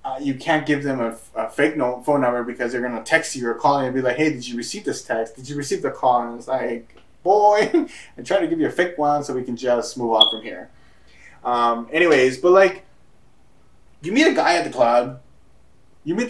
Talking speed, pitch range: 250 wpm, 115-145 Hz